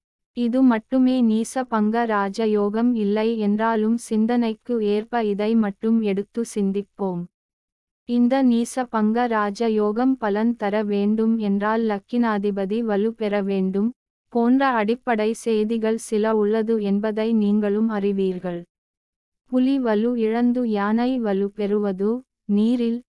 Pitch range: 205-235 Hz